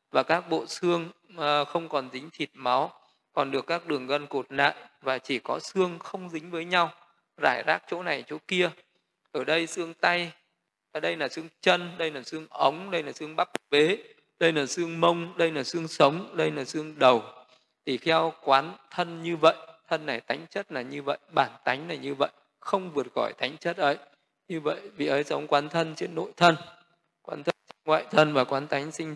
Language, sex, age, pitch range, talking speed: Vietnamese, male, 20-39, 135-170 Hz, 210 wpm